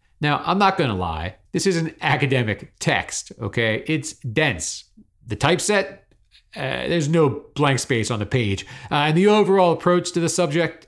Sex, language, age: male, English, 40-59